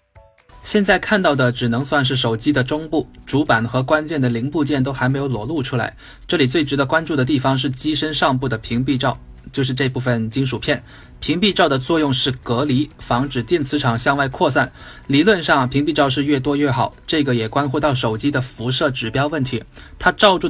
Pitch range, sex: 125-150 Hz, male